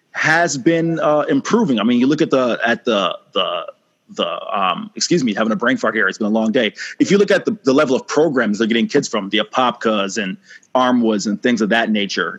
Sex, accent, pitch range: male, American, 110-145 Hz